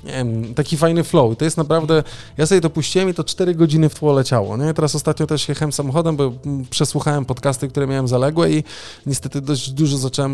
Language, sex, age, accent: Polish, male, 20-39, native